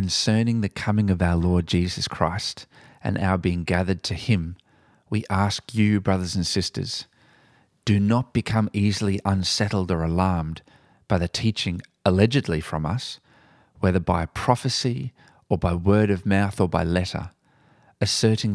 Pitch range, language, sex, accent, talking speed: 90-110 Hz, English, male, Australian, 145 wpm